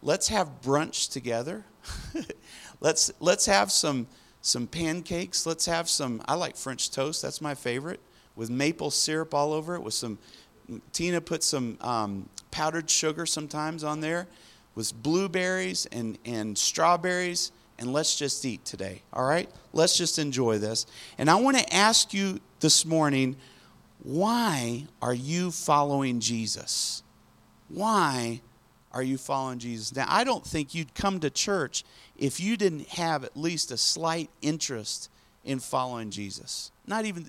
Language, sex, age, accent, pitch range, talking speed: English, male, 40-59, American, 125-170 Hz, 150 wpm